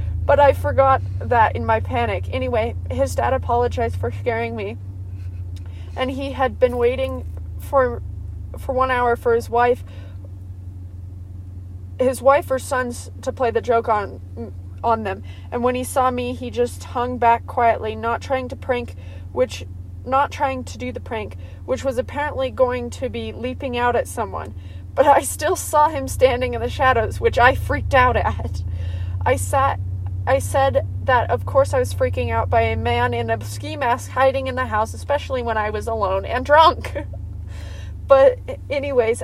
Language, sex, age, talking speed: English, female, 20-39, 175 wpm